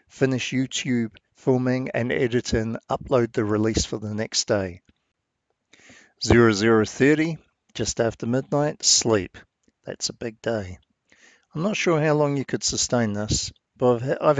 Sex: male